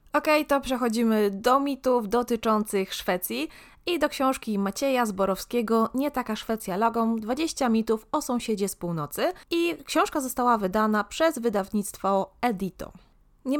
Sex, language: female, Polish